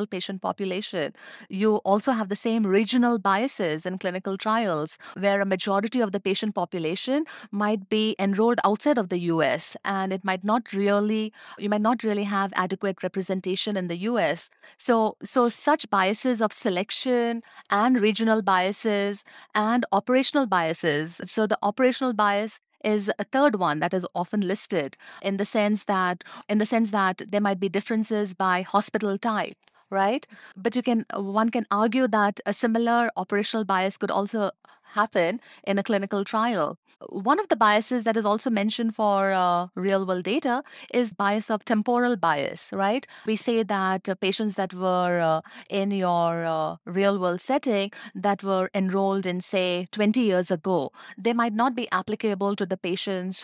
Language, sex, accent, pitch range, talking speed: English, female, Indian, 190-225 Hz, 165 wpm